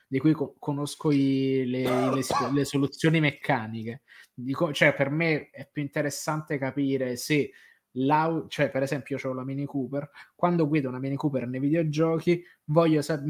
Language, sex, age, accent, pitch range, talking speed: Italian, male, 20-39, native, 130-150 Hz, 160 wpm